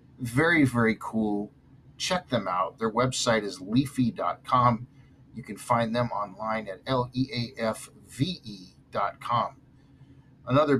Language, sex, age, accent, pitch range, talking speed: English, male, 50-69, American, 120-140 Hz, 100 wpm